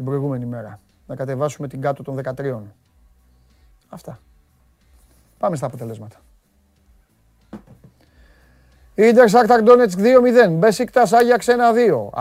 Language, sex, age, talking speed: Greek, male, 40-59, 90 wpm